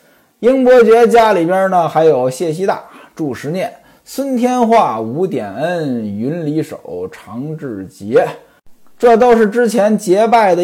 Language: Chinese